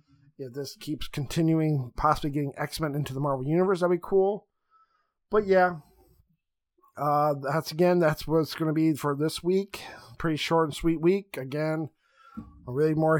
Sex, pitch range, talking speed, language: male, 145-175 Hz, 170 wpm, English